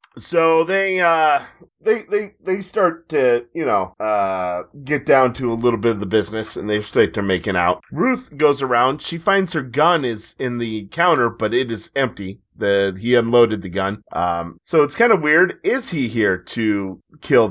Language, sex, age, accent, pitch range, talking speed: English, male, 30-49, American, 110-150 Hz, 195 wpm